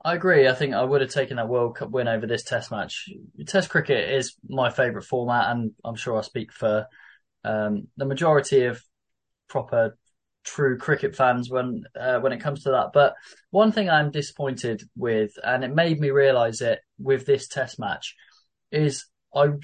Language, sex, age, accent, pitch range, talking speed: English, male, 20-39, British, 120-150 Hz, 185 wpm